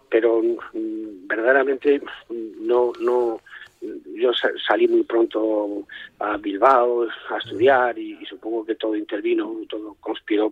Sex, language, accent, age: male, Spanish, Spanish, 40-59